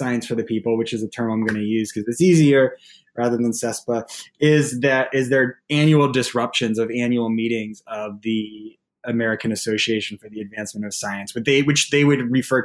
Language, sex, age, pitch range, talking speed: English, male, 20-39, 115-140 Hz, 190 wpm